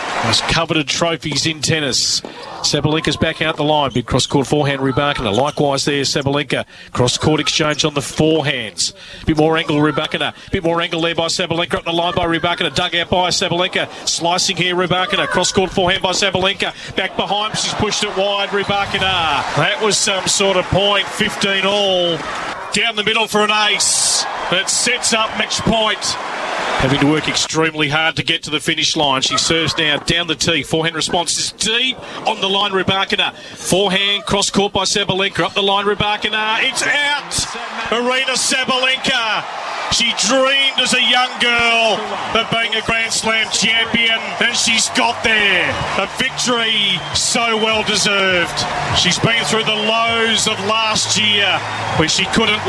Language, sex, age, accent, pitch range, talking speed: English, male, 40-59, Australian, 160-210 Hz, 165 wpm